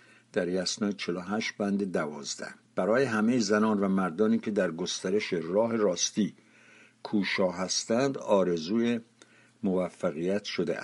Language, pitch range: Persian, 100-125 Hz